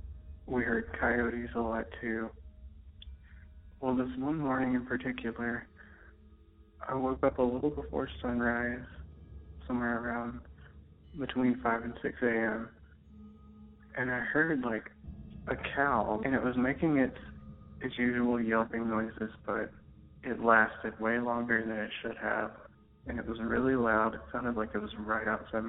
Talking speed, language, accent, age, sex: 145 wpm, English, American, 30-49, male